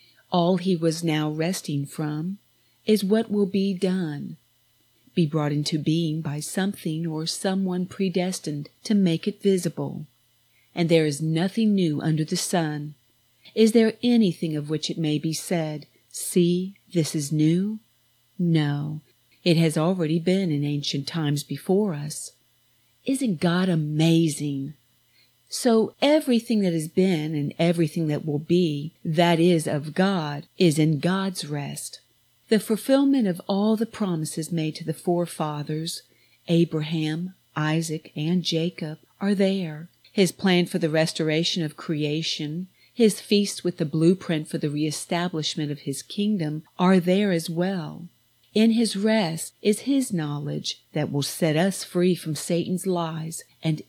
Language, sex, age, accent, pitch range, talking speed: English, female, 40-59, American, 150-185 Hz, 145 wpm